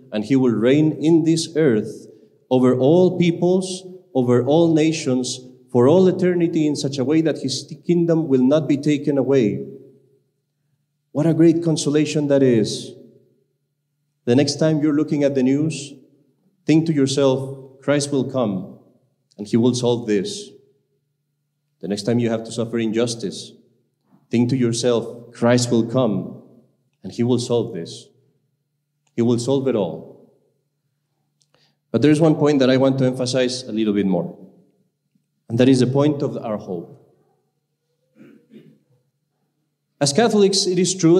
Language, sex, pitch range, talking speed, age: English, male, 130-150 Hz, 150 wpm, 40-59